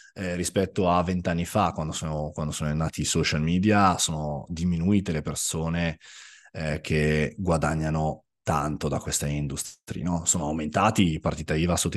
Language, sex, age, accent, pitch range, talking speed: Italian, male, 30-49, native, 80-100 Hz, 155 wpm